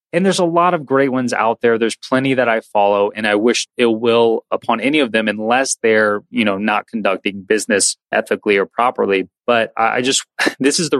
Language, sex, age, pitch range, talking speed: English, male, 20-39, 105-120 Hz, 215 wpm